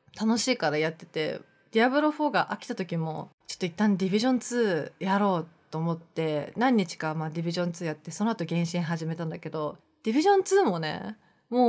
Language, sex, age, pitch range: Japanese, female, 20-39, 165-235 Hz